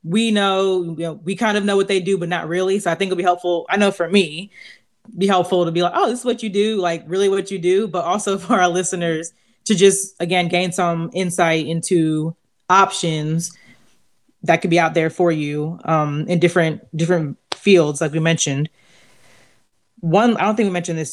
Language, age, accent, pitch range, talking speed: English, 20-39, American, 165-195 Hz, 215 wpm